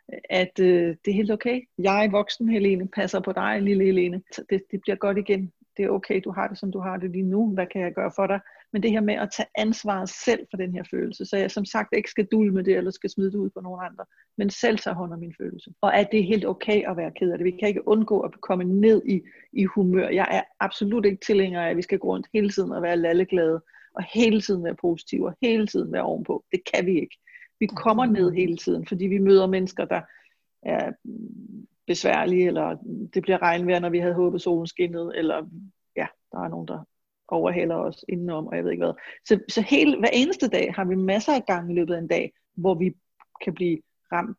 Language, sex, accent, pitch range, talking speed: Danish, female, native, 180-215 Hz, 245 wpm